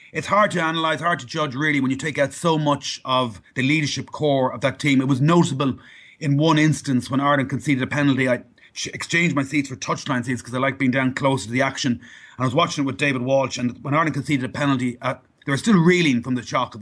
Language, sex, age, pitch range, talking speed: English, male, 30-49, 130-145 Hz, 255 wpm